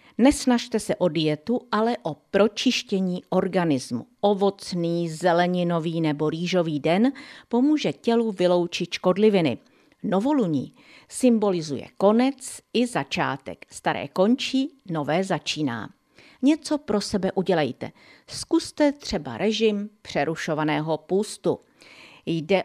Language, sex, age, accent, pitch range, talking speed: Czech, female, 50-69, native, 160-215 Hz, 95 wpm